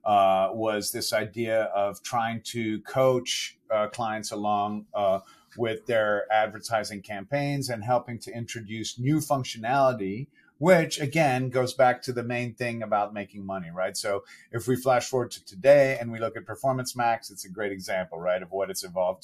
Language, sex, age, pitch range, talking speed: English, male, 40-59, 110-135 Hz, 175 wpm